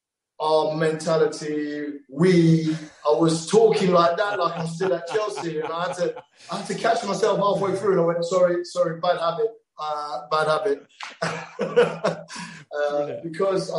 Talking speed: 155 wpm